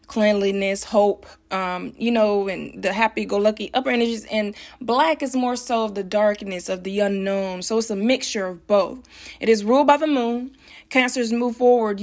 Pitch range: 210-255 Hz